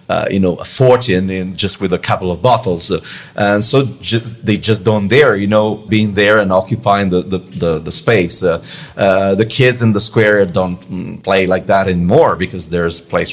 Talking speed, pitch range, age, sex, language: 210 wpm, 95-130 Hz, 40-59, male, English